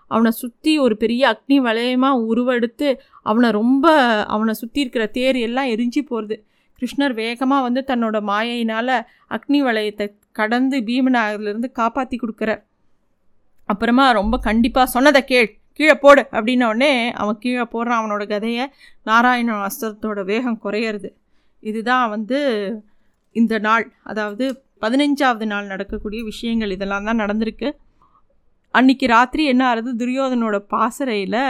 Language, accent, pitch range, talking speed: Tamil, native, 215-250 Hz, 120 wpm